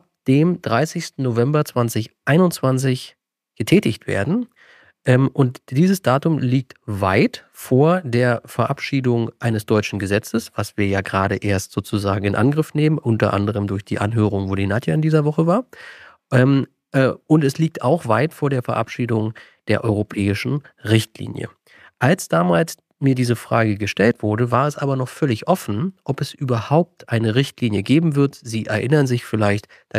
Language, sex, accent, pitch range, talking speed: German, male, German, 105-140 Hz, 150 wpm